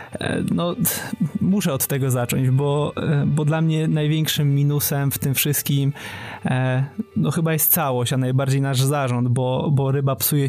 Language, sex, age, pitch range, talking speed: Polish, male, 20-39, 135-155 Hz, 150 wpm